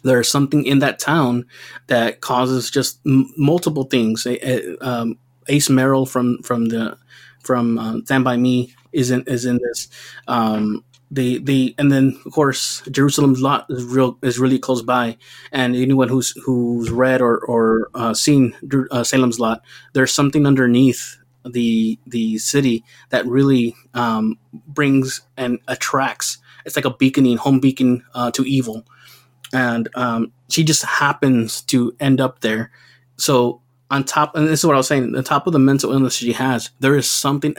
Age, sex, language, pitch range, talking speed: 20-39, male, English, 120-135 Hz, 170 wpm